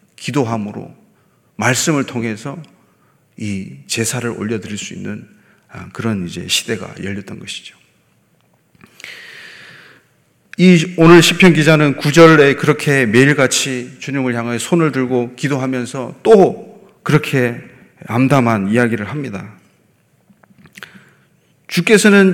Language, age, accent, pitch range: Korean, 30-49, native, 120-165 Hz